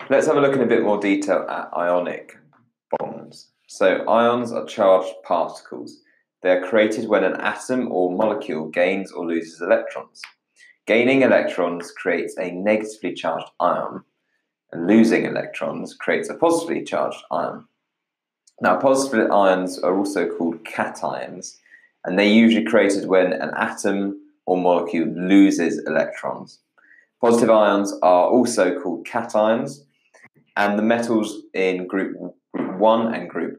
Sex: male